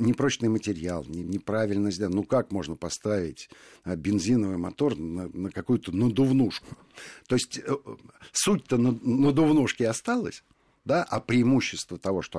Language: Russian